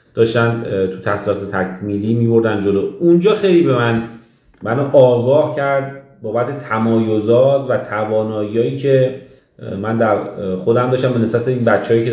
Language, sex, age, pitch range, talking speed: Persian, male, 30-49, 115-145 Hz, 140 wpm